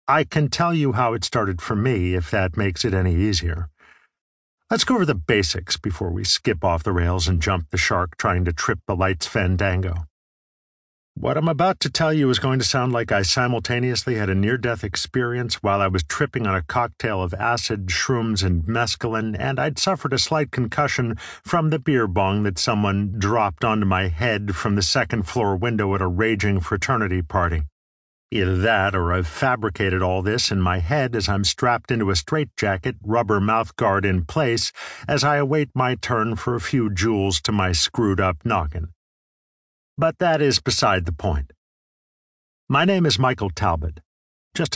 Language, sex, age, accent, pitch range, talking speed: English, male, 50-69, American, 90-125 Hz, 180 wpm